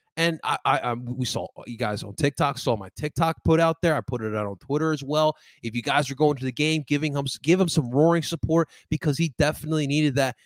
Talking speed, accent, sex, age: 250 wpm, American, male, 20-39